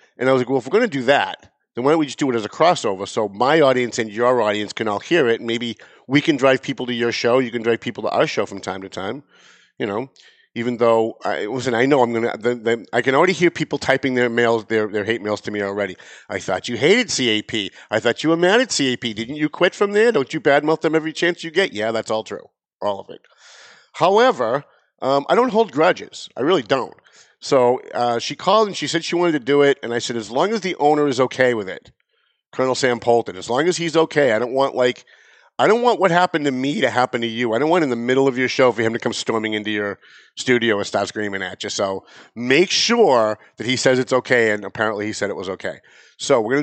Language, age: English, 50-69